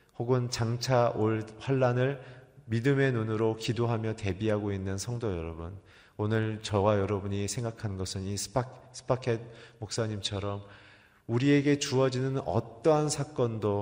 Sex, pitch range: male, 95-115 Hz